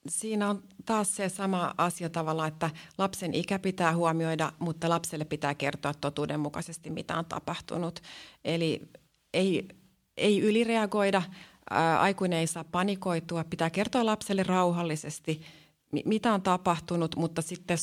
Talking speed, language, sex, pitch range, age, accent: 125 wpm, Finnish, female, 155-190 Hz, 30-49, native